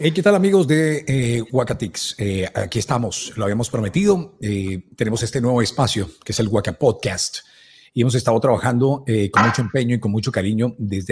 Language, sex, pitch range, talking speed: Spanish, male, 105-140 Hz, 195 wpm